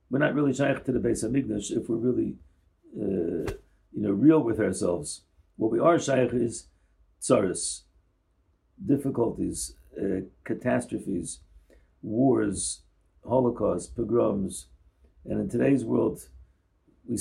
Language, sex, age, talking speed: English, male, 50-69, 115 wpm